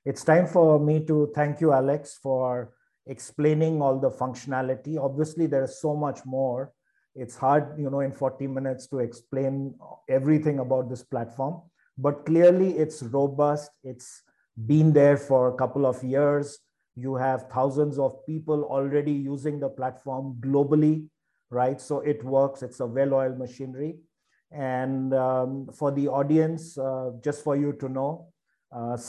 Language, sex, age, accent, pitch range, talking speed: English, male, 50-69, Indian, 130-145 Hz, 155 wpm